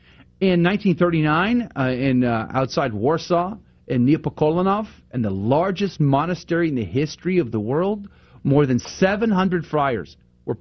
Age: 40-59